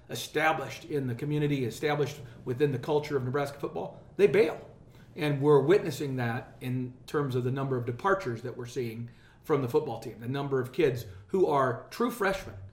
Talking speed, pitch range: 185 wpm, 125-150 Hz